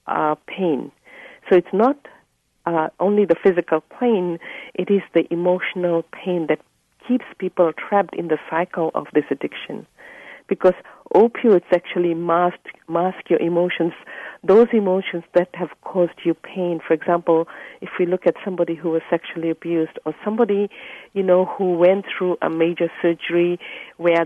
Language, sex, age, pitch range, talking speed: English, female, 50-69, 165-185 Hz, 150 wpm